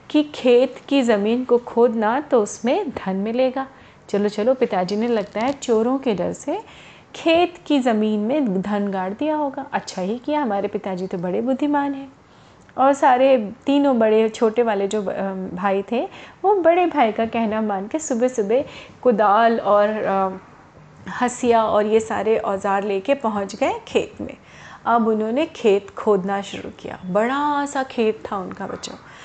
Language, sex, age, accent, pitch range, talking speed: Hindi, female, 30-49, native, 210-265 Hz, 160 wpm